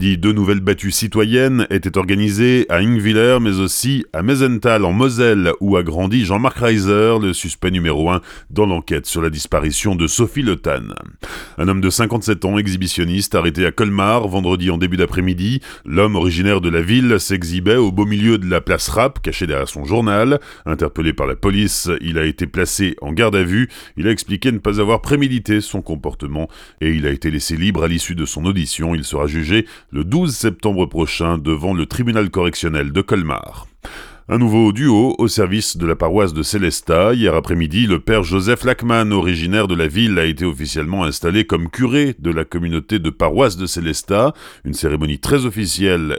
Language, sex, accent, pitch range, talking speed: French, male, French, 85-110 Hz, 185 wpm